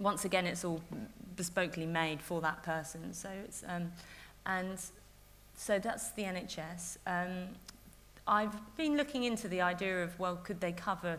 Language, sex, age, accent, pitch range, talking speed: English, female, 30-49, British, 170-200 Hz, 155 wpm